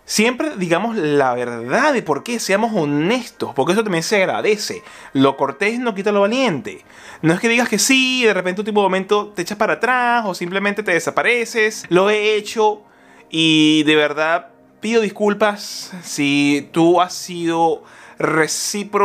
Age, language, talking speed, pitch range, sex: 20-39, Spanish, 175 wpm, 155-215 Hz, male